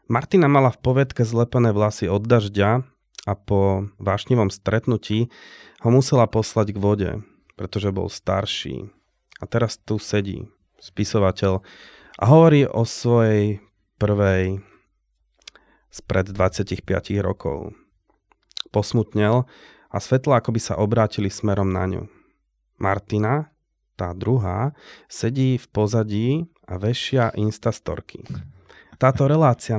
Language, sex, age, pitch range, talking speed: Slovak, male, 30-49, 100-120 Hz, 110 wpm